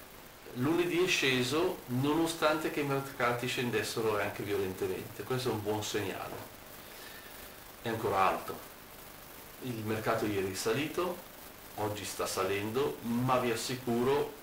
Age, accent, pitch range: 50-69, native, 110-135 Hz